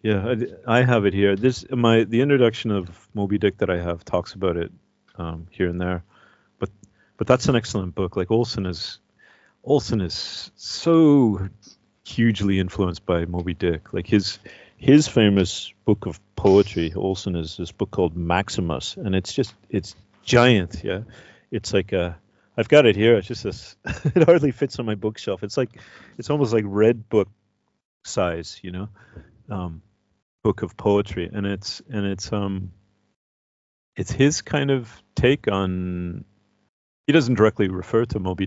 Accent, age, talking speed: American, 40-59, 165 wpm